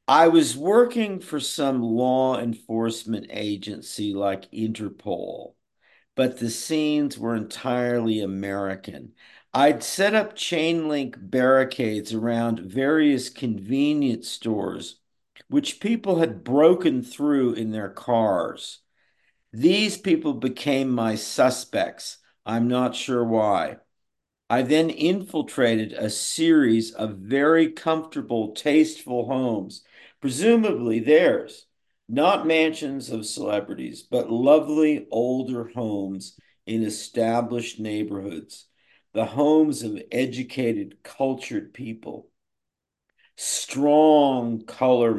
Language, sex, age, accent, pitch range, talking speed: English, male, 50-69, American, 110-150 Hz, 95 wpm